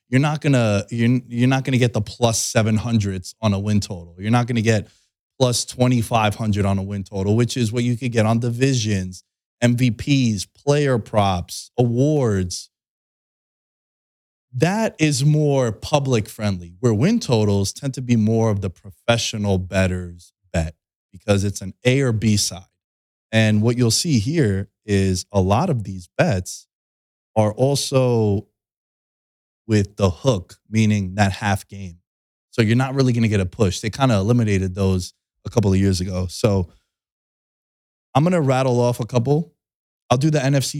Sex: male